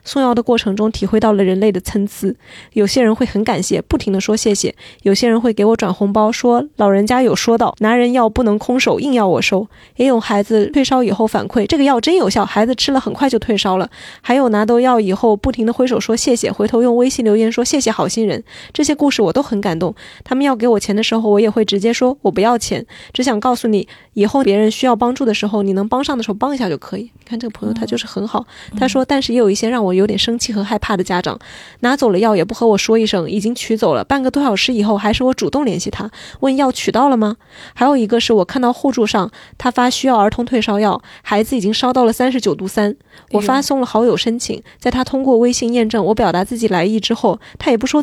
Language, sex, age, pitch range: Chinese, female, 20-39, 210-255 Hz